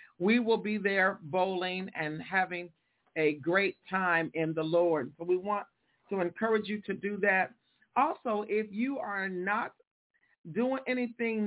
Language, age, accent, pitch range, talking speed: English, 50-69, American, 185-225 Hz, 150 wpm